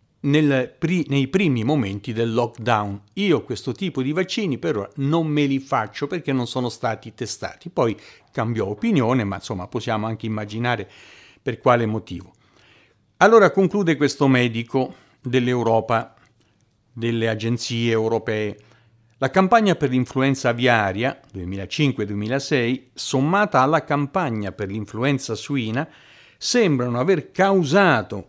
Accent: native